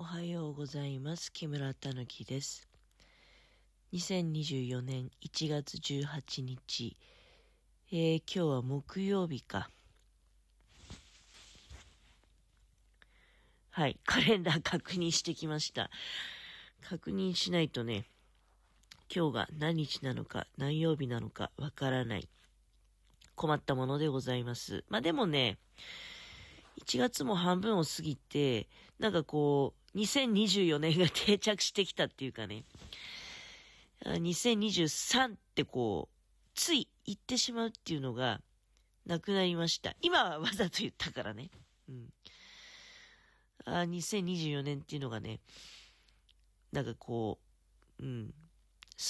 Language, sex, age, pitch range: Japanese, female, 40-59, 120-175 Hz